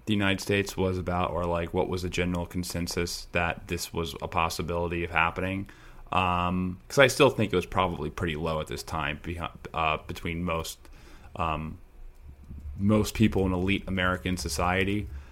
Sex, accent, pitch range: male, American, 85-95 Hz